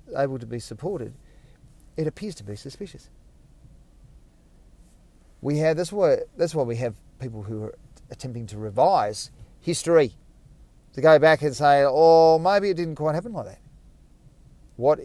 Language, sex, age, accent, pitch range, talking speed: English, male, 40-59, Australian, 115-160 Hz, 155 wpm